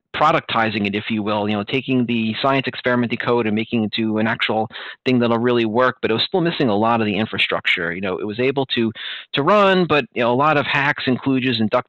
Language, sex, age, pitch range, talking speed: English, male, 30-49, 110-150 Hz, 255 wpm